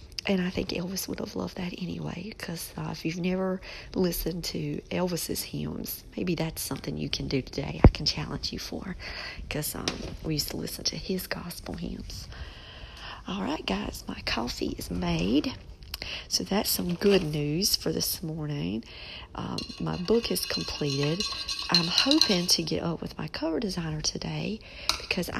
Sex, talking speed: female, 170 wpm